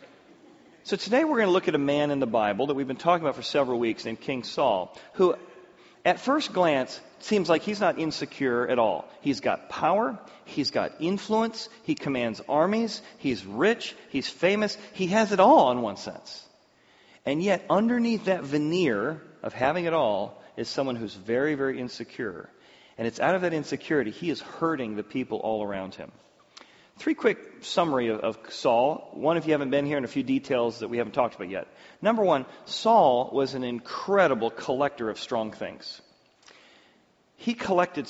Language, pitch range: English, 135-210 Hz